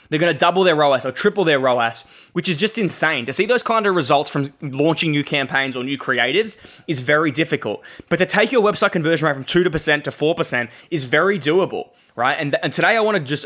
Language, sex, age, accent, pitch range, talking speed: English, male, 20-39, Australian, 140-180 Hz, 230 wpm